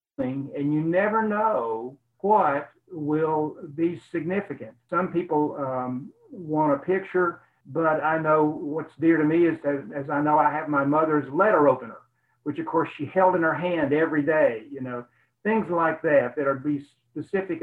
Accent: American